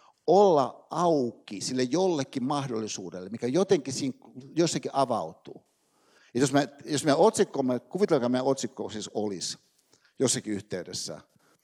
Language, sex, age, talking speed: Finnish, male, 60-79, 130 wpm